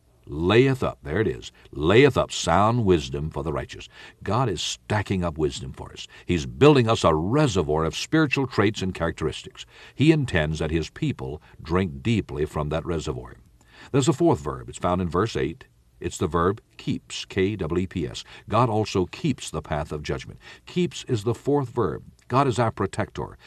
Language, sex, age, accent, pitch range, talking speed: English, male, 60-79, American, 80-120 Hz, 175 wpm